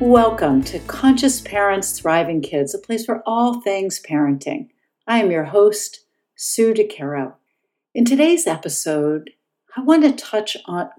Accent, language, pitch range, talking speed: American, English, 165-235 Hz, 140 wpm